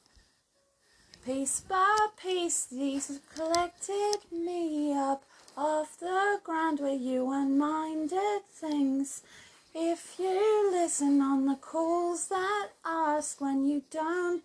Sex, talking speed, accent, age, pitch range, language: female, 110 wpm, British, 30-49, 300-390 Hz, English